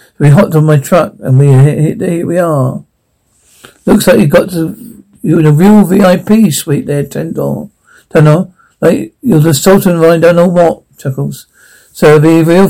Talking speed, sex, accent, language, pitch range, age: 190 wpm, male, British, English, 145-180 Hz, 60-79